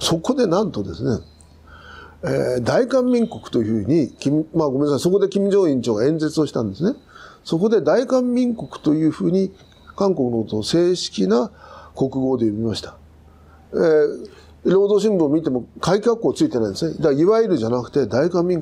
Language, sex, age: Japanese, male, 50-69